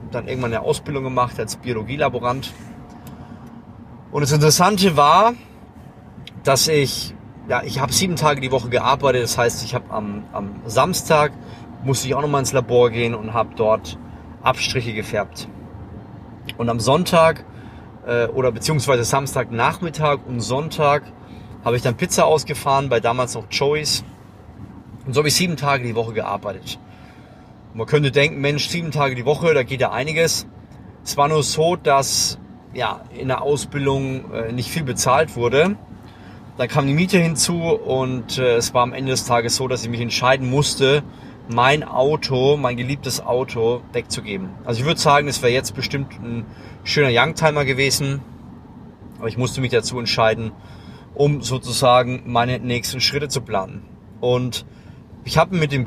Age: 30-49